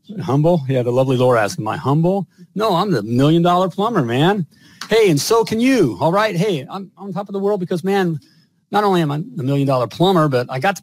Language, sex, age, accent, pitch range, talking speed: English, male, 50-69, American, 140-195 Hz, 235 wpm